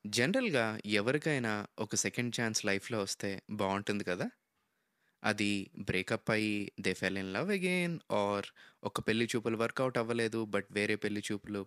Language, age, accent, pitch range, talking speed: Telugu, 20-39, native, 100-120 Hz, 140 wpm